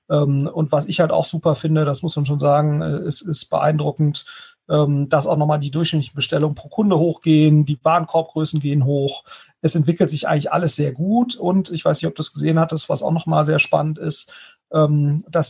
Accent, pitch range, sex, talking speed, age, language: German, 145-170 Hz, male, 195 wpm, 40-59, German